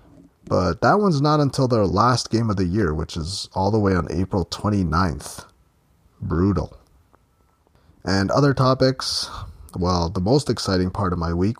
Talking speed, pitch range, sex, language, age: 160 wpm, 90-125 Hz, male, English, 30-49